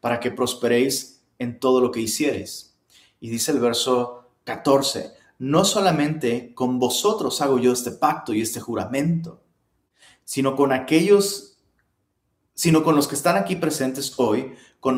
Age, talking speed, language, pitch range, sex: 30-49, 145 wpm, Spanish, 130-175 Hz, male